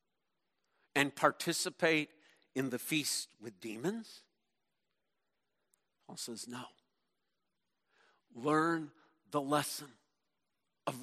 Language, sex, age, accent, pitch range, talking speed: English, male, 50-69, American, 160-255 Hz, 75 wpm